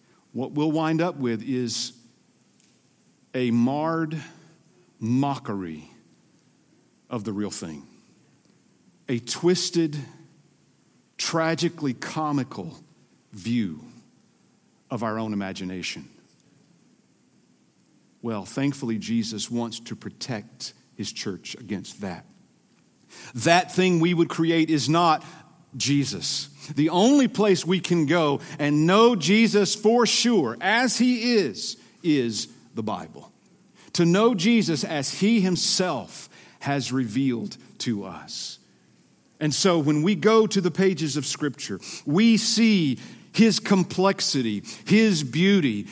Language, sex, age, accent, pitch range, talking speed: English, male, 50-69, American, 130-185 Hz, 110 wpm